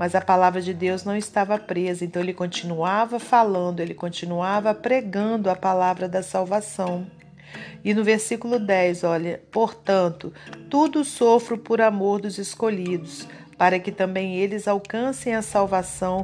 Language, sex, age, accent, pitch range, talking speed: Portuguese, female, 40-59, Brazilian, 185-220 Hz, 140 wpm